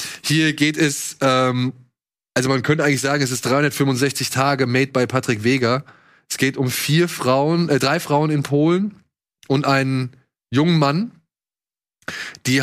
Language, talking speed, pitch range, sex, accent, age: German, 150 wpm, 120-140 Hz, male, German, 20-39